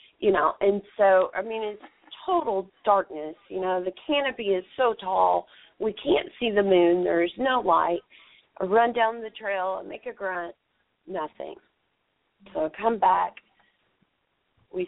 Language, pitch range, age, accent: English, 180-235 Hz, 40-59, American